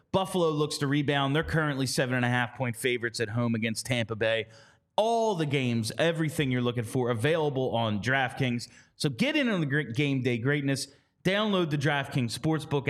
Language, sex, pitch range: English, male, 120-160 Hz